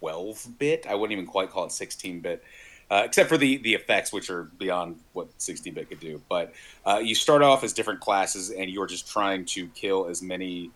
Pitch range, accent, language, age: 90-120 Hz, American, English, 30-49